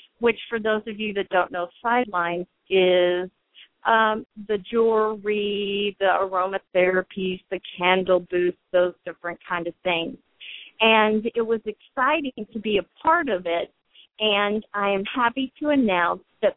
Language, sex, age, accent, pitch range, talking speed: English, female, 40-59, American, 185-225 Hz, 145 wpm